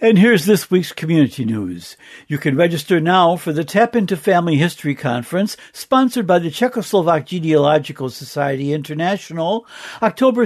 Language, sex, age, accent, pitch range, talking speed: English, male, 60-79, American, 155-210 Hz, 145 wpm